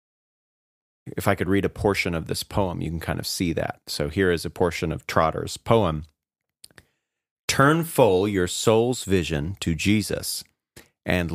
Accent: American